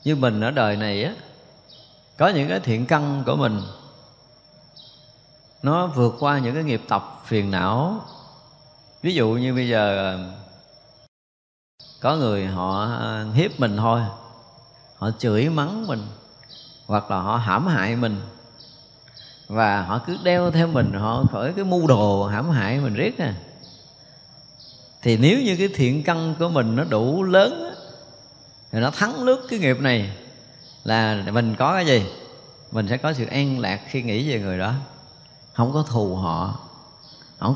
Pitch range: 110-150 Hz